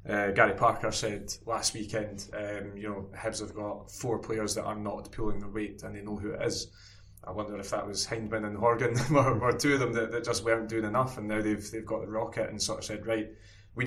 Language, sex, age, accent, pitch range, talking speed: English, male, 20-39, British, 105-115 Hz, 250 wpm